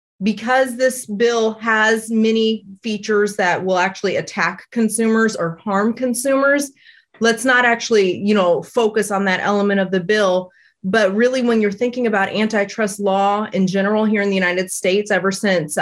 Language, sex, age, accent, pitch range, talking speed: English, female, 30-49, American, 185-225 Hz, 165 wpm